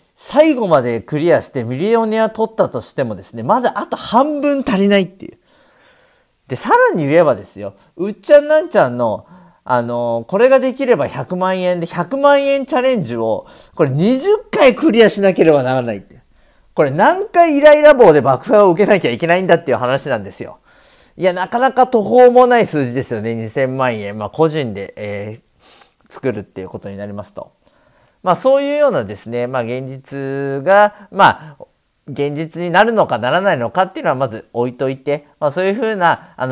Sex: male